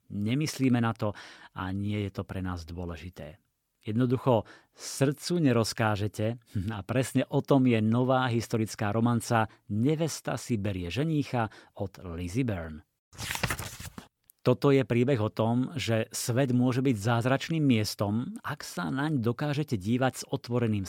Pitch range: 105-130 Hz